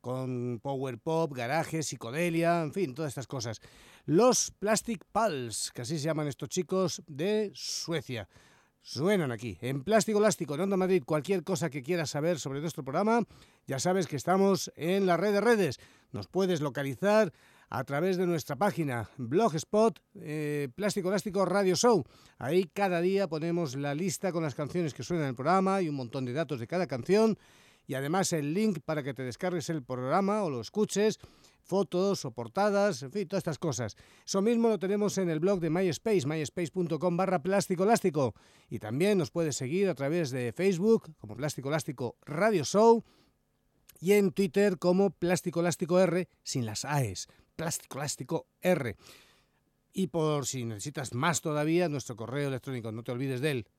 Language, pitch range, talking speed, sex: Spanish, 140-190 Hz, 175 wpm, male